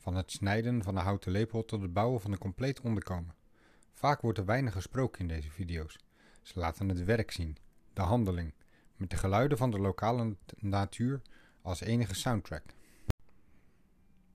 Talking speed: 165 wpm